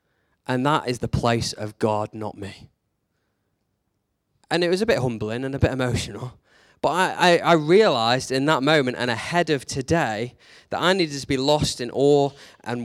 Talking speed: 185 wpm